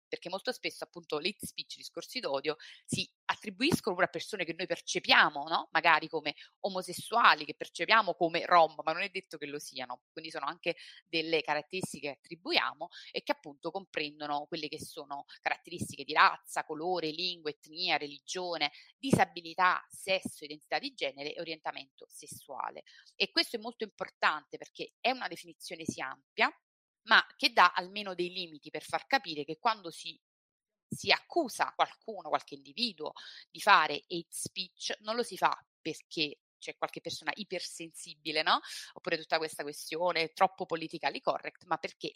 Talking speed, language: 160 wpm, Italian